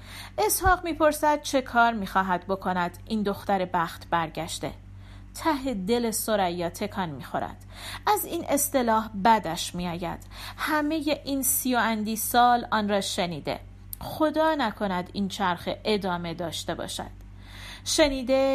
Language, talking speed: Persian, 115 wpm